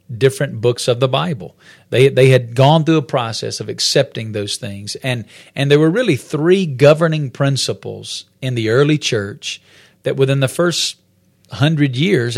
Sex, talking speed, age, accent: male, 165 wpm, 40-59, American